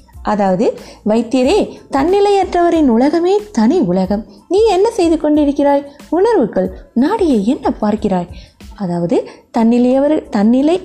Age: 20-39